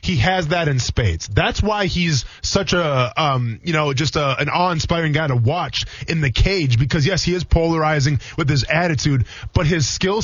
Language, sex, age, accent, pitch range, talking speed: English, male, 20-39, American, 130-170 Hz, 205 wpm